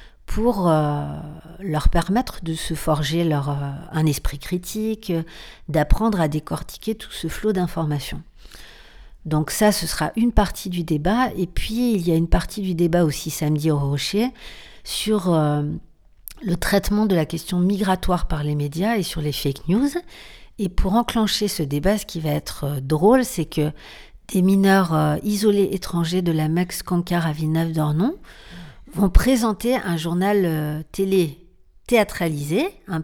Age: 60-79